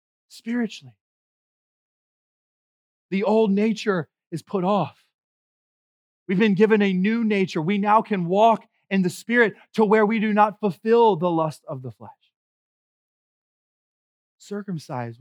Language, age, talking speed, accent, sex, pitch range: English, 30-49, 125 wpm, American, male, 175-220 Hz